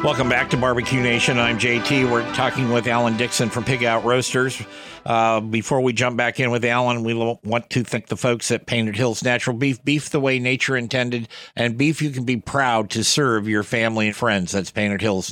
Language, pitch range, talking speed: English, 110-130 Hz, 215 wpm